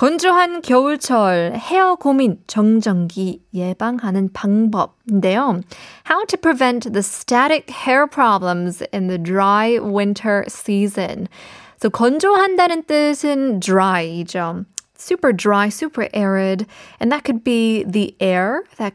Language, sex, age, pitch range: Korean, female, 20-39, 195-275 Hz